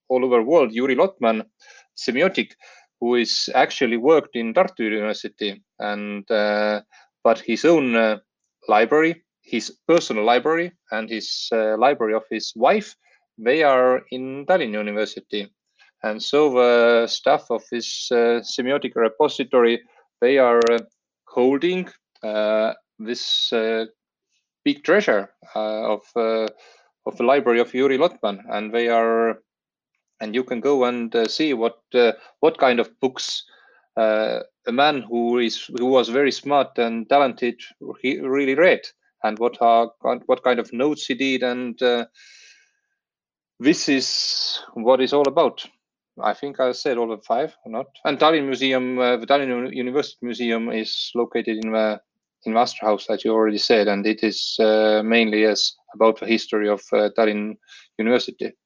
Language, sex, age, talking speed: English, male, 30-49, 150 wpm